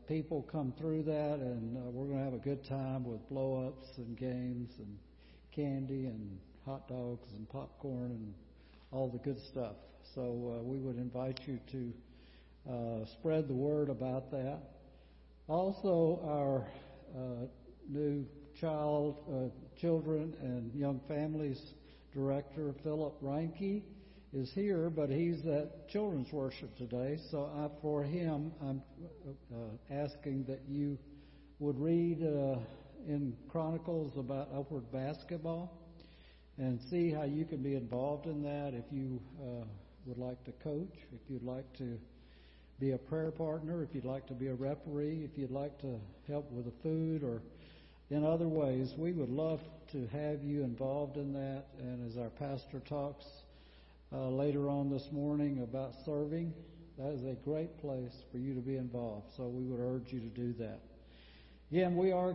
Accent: American